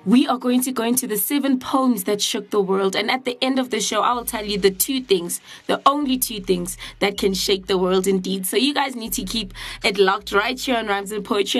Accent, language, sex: South African, English, female